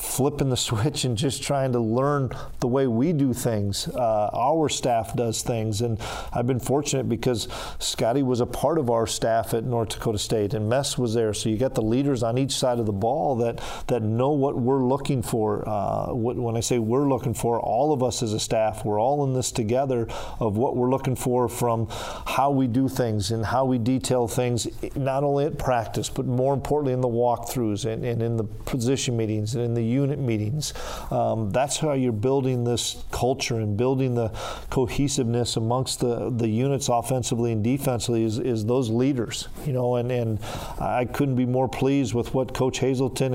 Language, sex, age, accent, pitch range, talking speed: English, male, 40-59, American, 115-135 Hz, 200 wpm